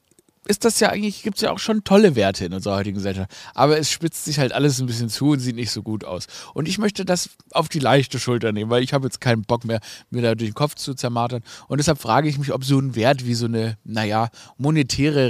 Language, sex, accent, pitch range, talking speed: German, male, German, 115-160 Hz, 265 wpm